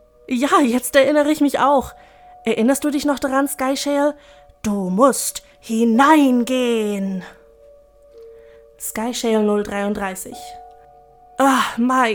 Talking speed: 85 wpm